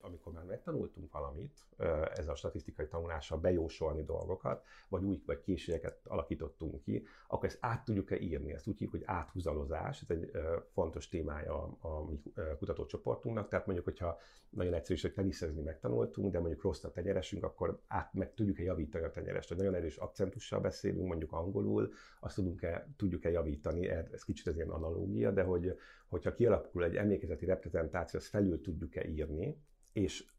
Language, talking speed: Hungarian, 155 wpm